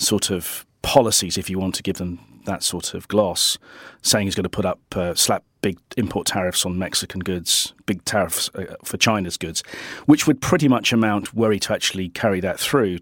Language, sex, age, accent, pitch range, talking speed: English, male, 40-59, British, 95-110 Hz, 200 wpm